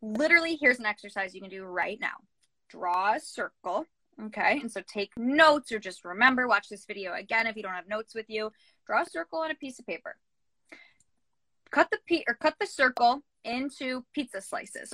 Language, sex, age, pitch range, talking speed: English, female, 20-39, 210-285 Hz, 195 wpm